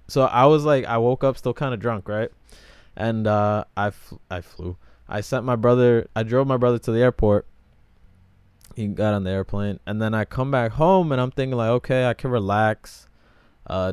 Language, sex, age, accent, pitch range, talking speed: English, male, 20-39, American, 90-120 Hz, 205 wpm